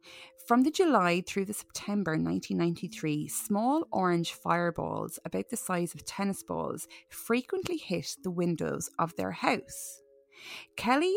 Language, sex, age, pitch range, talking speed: English, female, 30-49, 160-230 Hz, 130 wpm